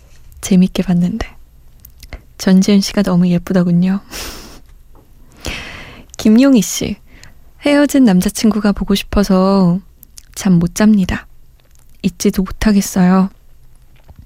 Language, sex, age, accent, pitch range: Korean, female, 20-39, native, 180-220 Hz